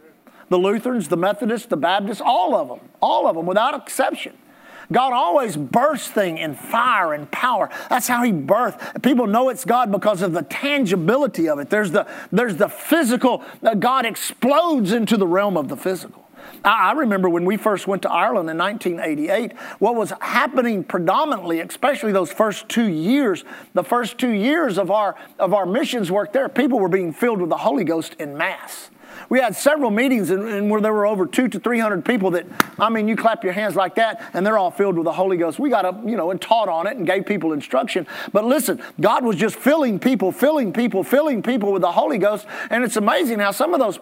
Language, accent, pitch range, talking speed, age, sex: English, American, 195-255 Hz, 215 wpm, 50-69, male